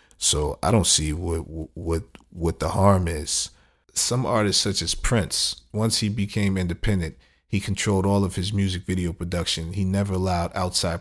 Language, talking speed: English, 170 wpm